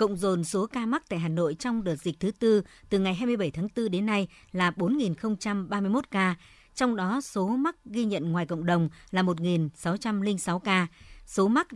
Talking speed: 190 wpm